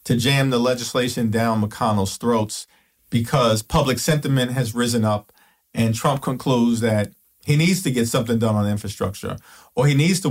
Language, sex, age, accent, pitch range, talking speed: English, male, 50-69, American, 110-125 Hz, 170 wpm